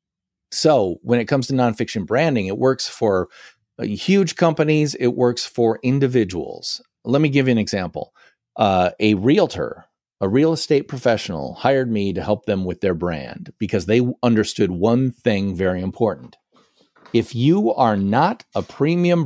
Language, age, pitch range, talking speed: English, 40-59, 105-140 Hz, 155 wpm